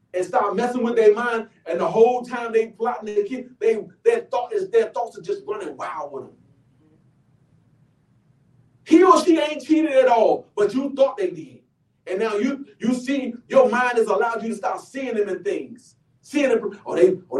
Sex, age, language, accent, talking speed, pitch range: male, 40-59, English, American, 205 wpm, 190-310 Hz